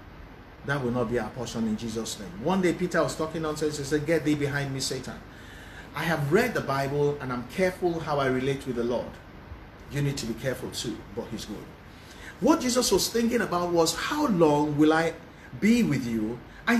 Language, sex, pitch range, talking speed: English, male, 160-230 Hz, 210 wpm